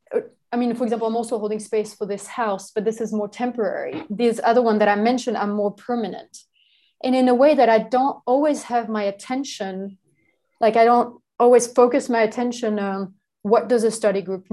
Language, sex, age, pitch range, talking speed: English, female, 30-49, 210-245 Hz, 200 wpm